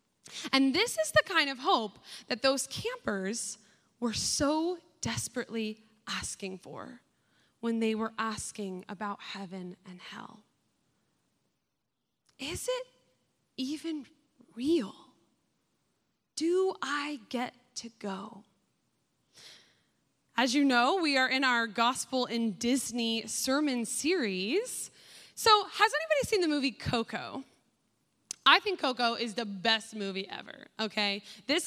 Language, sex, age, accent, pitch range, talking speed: English, female, 20-39, American, 220-300 Hz, 115 wpm